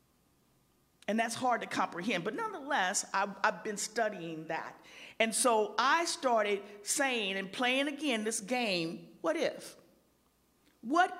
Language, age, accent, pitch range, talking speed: English, 50-69, American, 190-250 Hz, 135 wpm